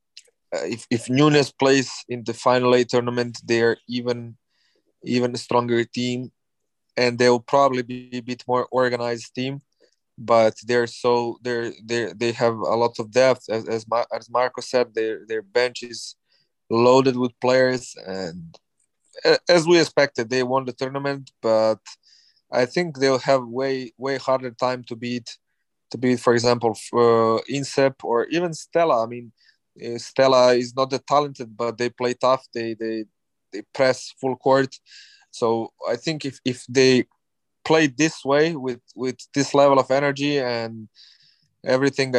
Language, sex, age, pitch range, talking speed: English, male, 20-39, 120-135 Hz, 160 wpm